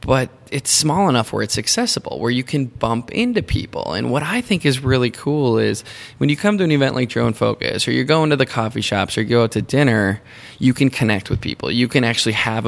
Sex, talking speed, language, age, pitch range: male, 245 wpm, English, 20-39, 110-140 Hz